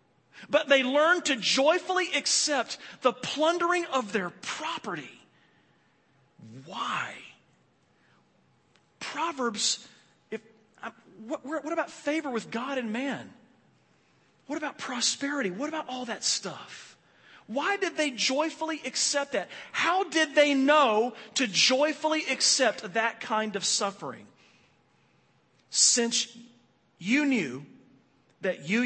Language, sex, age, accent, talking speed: English, male, 40-59, American, 105 wpm